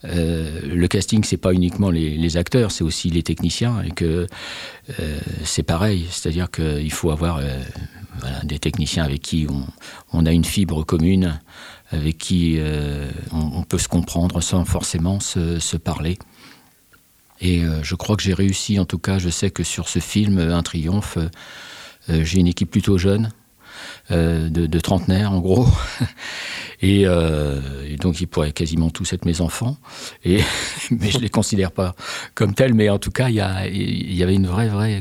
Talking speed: 185 wpm